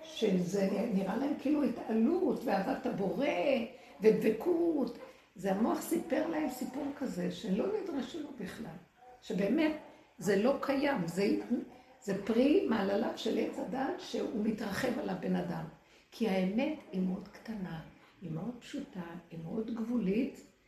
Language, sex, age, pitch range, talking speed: Hebrew, female, 60-79, 195-265 Hz, 130 wpm